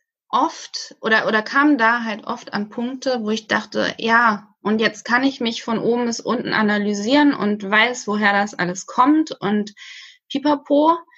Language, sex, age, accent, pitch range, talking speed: German, female, 20-39, German, 190-250 Hz, 165 wpm